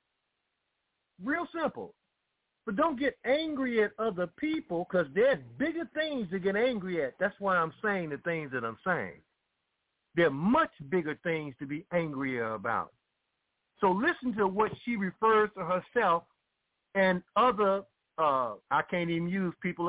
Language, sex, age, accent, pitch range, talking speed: English, male, 50-69, American, 170-235 Hz, 155 wpm